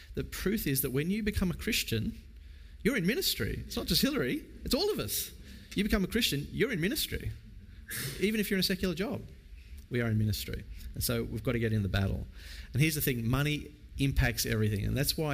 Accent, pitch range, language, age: Australian, 90-140 Hz, English, 40-59